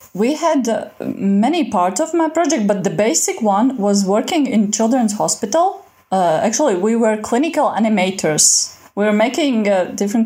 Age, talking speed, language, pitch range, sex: 20-39, 165 wpm, English, 180-240 Hz, female